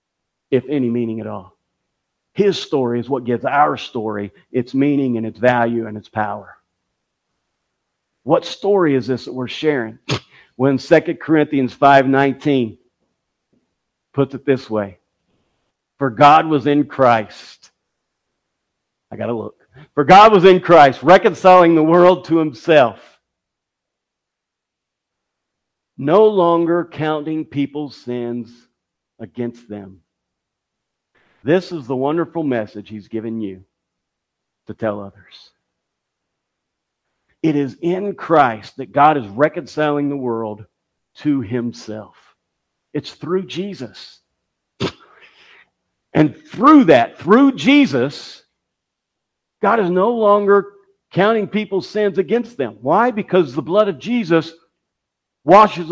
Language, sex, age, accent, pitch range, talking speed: English, male, 50-69, American, 120-180 Hz, 115 wpm